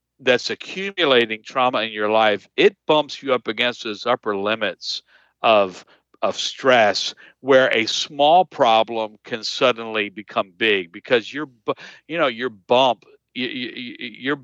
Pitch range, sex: 110-140 Hz, male